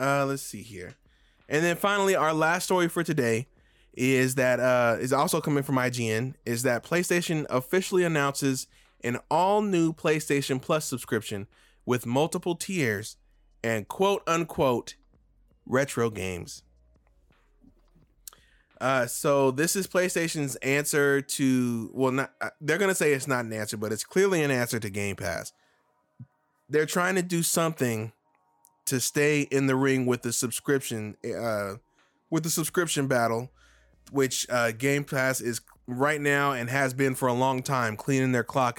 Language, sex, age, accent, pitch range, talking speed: English, male, 20-39, American, 120-155 Hz, 150 wpm